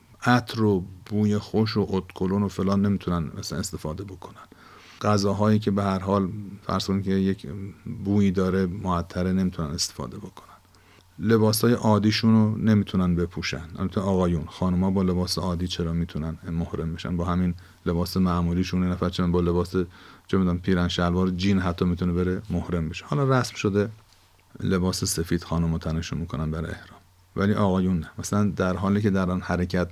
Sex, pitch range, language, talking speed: male, 90-105 Hz, Persian, 150 wpm